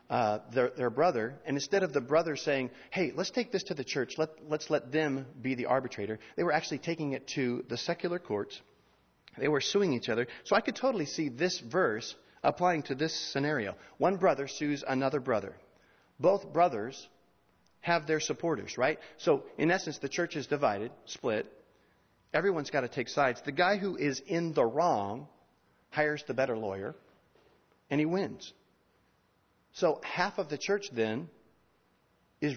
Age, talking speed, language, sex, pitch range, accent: 40-59, 170 wpm, English, male, 125-165 Hz, American